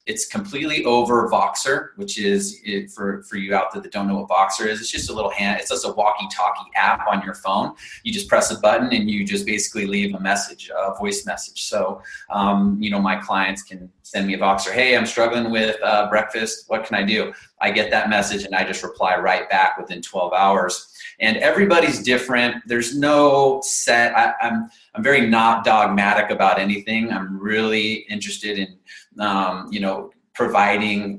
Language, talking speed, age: English, 195 wpm, 30-49